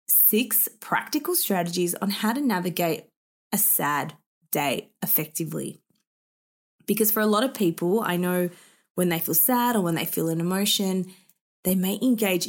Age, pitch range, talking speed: 20-39, 175-240 Hz, 155 wpm